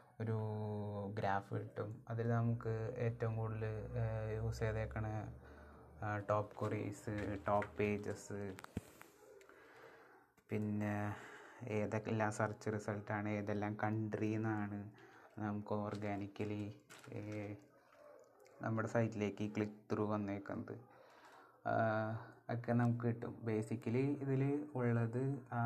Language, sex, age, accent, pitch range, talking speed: Malayalam, male, 20-39, native, 105-115 Hz, 75 wpm